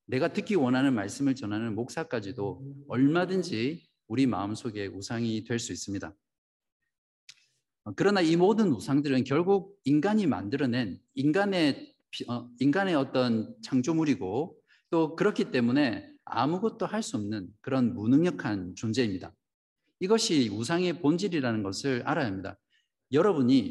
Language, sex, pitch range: Korean, male, 115-185 Hz